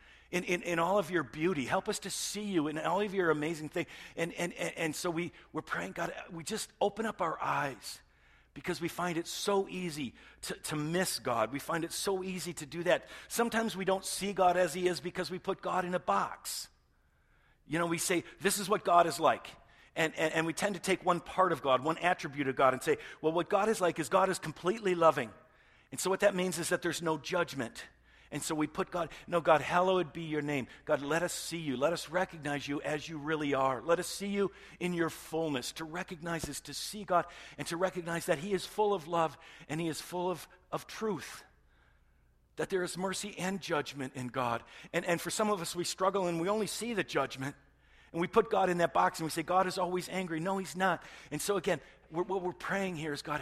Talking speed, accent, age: 240 wpm, American, 50-69